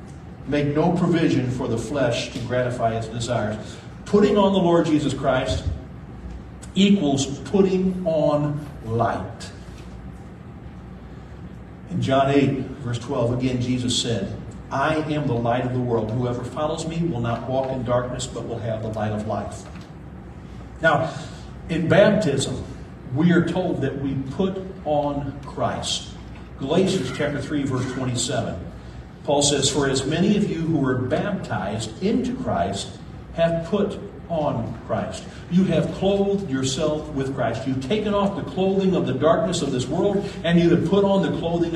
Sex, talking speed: male, 150 wpm